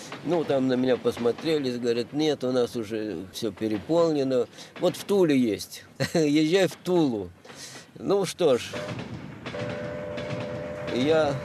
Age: 50-69